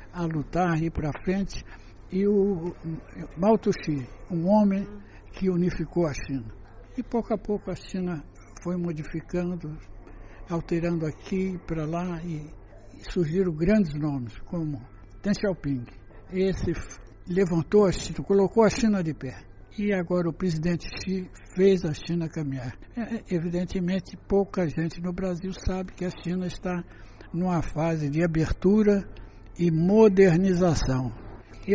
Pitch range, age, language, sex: 150-190 Hz, 60-79, Chinese, male